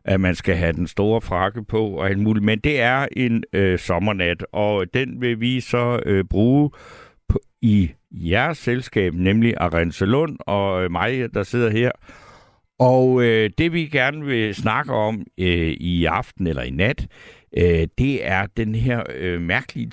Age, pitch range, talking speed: 60-79, 95-125 Hz, 170 wpm